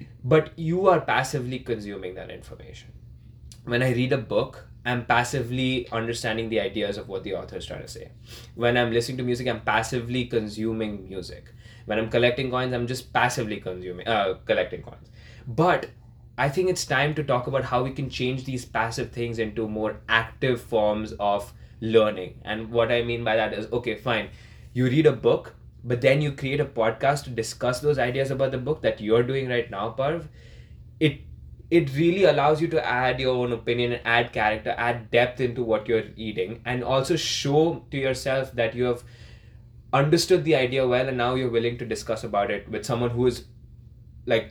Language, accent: English, Indian